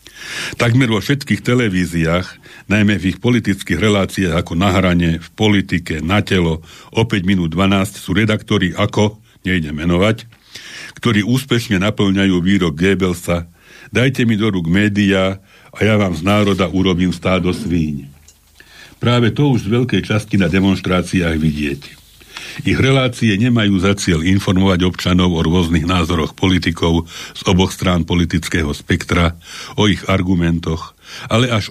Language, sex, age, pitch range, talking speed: Slovak, male, 60-79, 85-105 Hz, 135 wpm